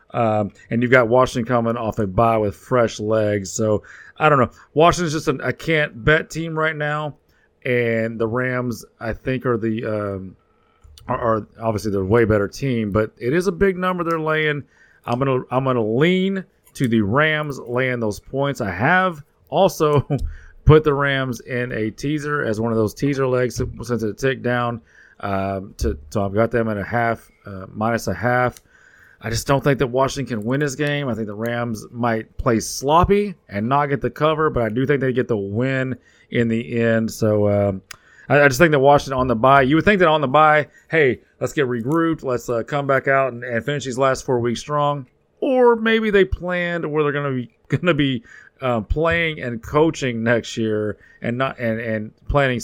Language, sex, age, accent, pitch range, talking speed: English, male, 30-49, American, 110-145 Hz, 215 wpm